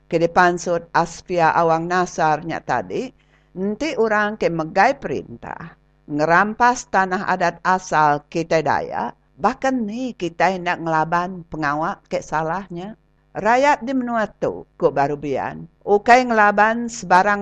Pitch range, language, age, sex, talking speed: 165-200 Hz, English, 50-69, female, 115 wpm